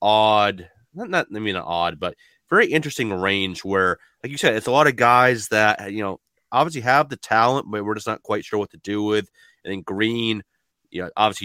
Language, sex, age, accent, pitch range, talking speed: English, male, 30-49, American, 95-120 Hz, 220 wpm